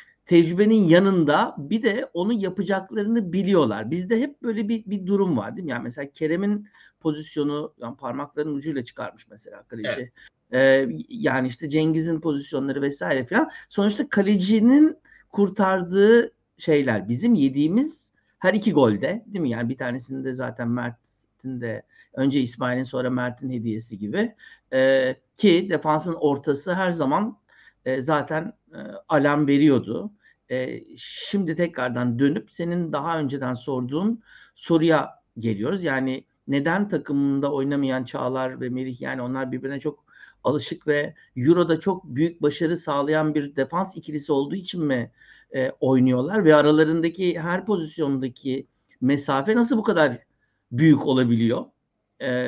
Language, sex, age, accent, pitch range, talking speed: Turkish, male, 60-79, native, 130-185 Hz, 130 wpm